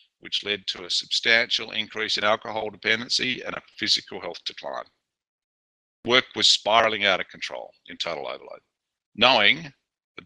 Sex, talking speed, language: male, 145 wpm, English